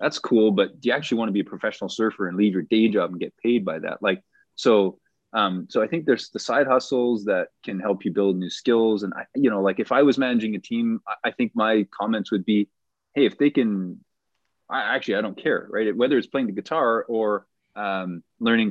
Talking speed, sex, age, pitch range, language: 235 wpm, male, 20-39, 100-130 Hz, English